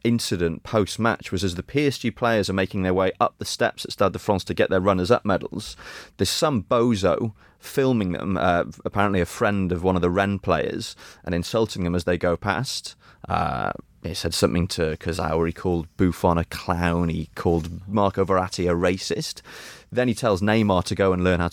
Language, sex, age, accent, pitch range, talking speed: English, male, 30-49, British, 90-110 Hz, 200 wpm